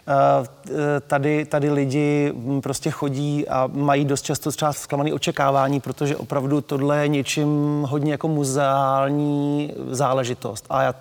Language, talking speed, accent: Czech, 120 wpm, native